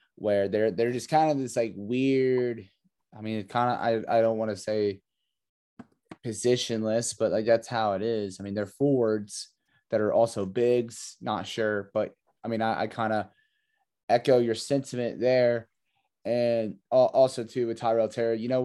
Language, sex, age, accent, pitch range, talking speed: English, male, 20-39, American, 105-120 Hz, 175 wpm